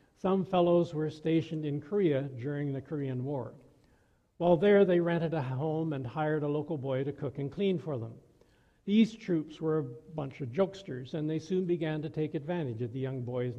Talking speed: 200 wpm